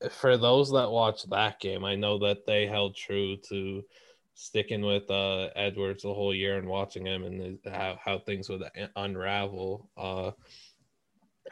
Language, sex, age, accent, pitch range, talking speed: English, male, 20-39, American, 95-110 Hz, 155 wpm